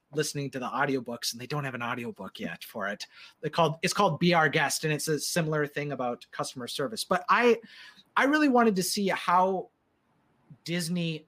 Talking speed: 195 wpm